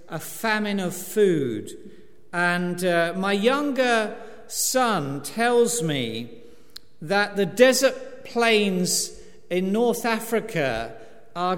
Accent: British